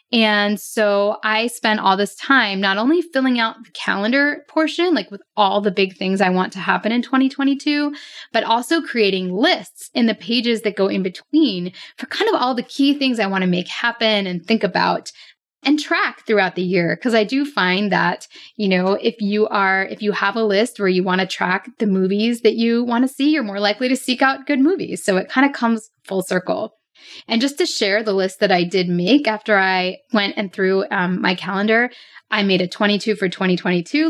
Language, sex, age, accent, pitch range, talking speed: English, female, 10-29, American, 195-270 Hz, 215 wpm